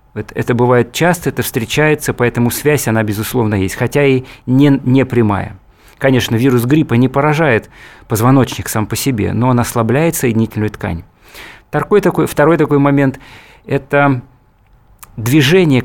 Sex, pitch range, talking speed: male, 115-145 Hz, 135 wpm